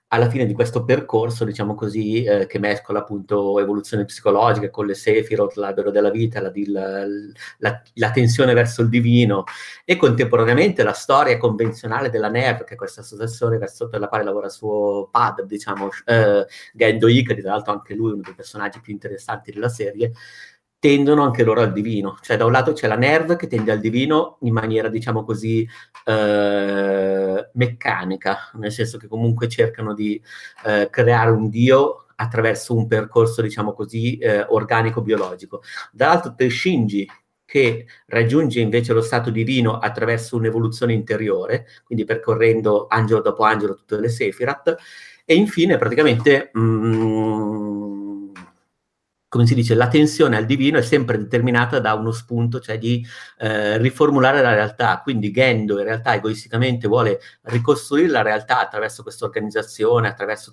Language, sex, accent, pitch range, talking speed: Italian, male, native, 105-120 Hz, 155 wpm